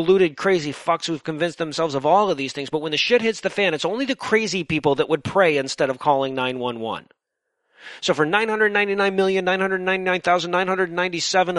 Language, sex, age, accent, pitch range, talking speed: English, male, 40-59, American, 165-205 Hz, 170 wpm